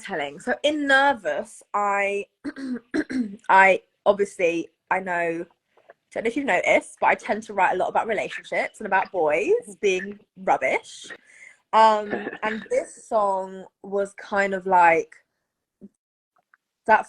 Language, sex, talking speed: English, female, 135 wpm